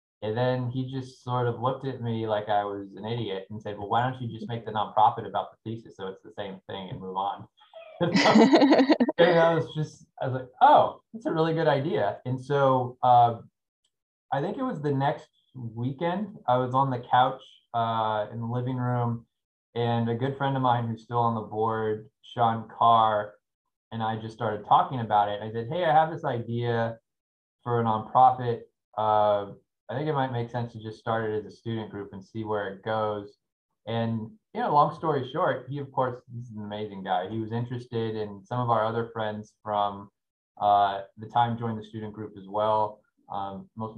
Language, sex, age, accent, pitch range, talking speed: English, male, 20-39, American, 105-130 Hz, 205 wpm